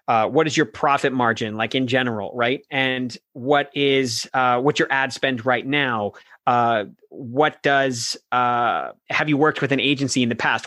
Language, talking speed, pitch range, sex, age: English, 185 wpm, 120-145 Hz, male, 30-49